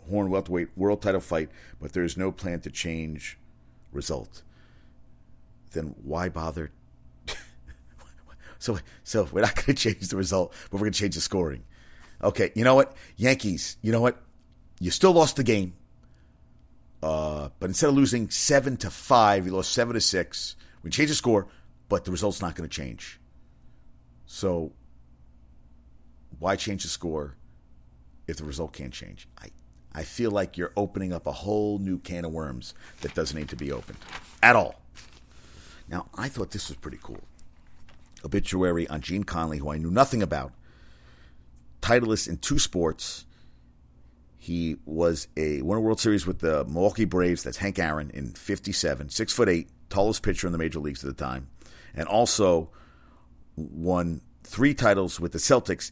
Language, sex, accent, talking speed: English, male, American, 165 wpm